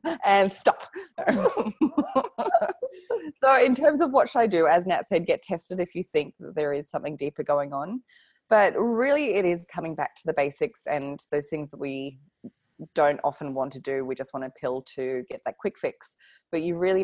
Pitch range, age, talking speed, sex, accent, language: 145-210 Hz, 20-39, 200 wpm, female, Australian, English